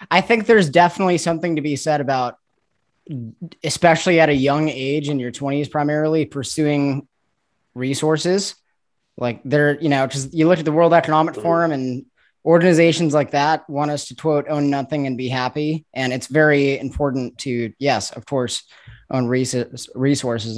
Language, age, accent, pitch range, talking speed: English, 20-39, American, 135-170 Hz, 160 wpm